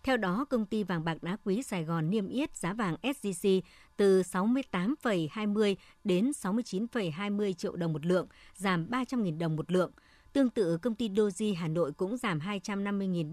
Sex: male